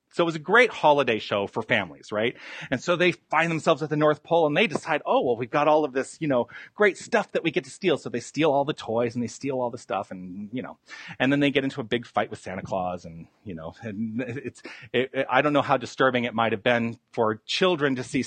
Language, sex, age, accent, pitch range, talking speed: English, male, 40-59, American, 110-160 Hz, 265 wpm